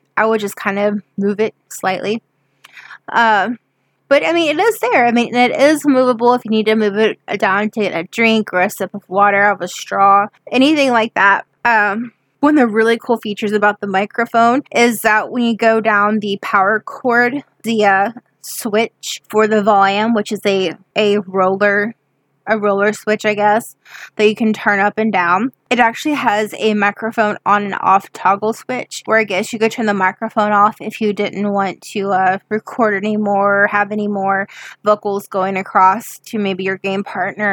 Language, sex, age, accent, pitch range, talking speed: English, female, 20-39, American, 200-225 Hz, 195 wpm